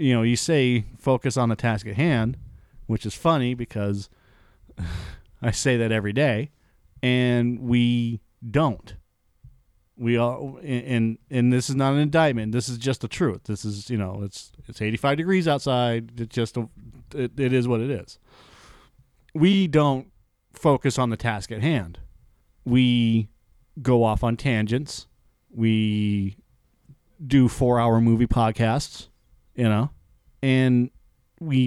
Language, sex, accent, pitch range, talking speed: English, male, American, 115-140 Hz, 145 wpm